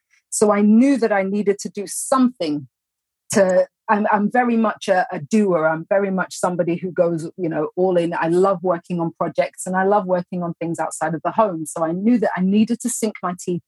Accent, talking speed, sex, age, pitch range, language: British, 230 wpm, female, 30-49, 170-225 Hz, English